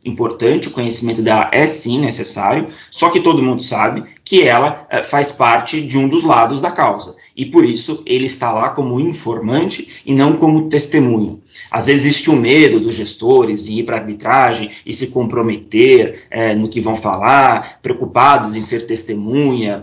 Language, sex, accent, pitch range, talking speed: Portuguese, male, Brazilian, 110-145 Hz, 180 wpm